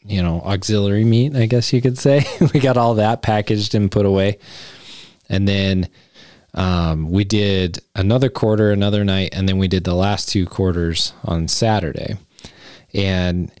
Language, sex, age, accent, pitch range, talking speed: English, male, 20-39, American, 95-110 Hz, 165 wpm